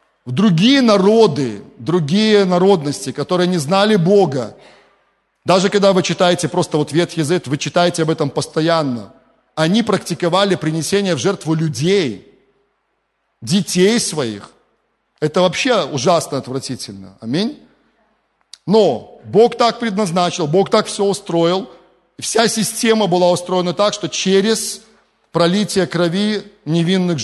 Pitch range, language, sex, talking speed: 160-200 Hz, Russian, male, 115 wpm